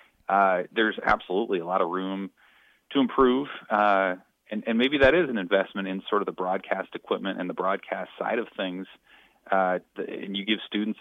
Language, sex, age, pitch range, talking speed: English, male, 30-49, 90-105 Hz, 185 wpm